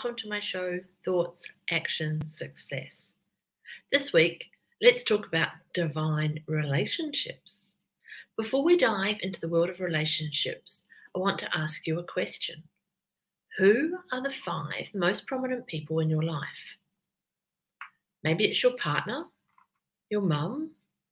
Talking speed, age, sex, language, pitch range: 130 wpm, 40-59, female, English, 170-265 Hz